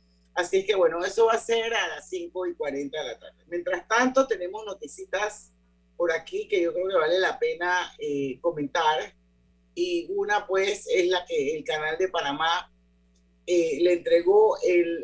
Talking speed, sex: 175 wpm, male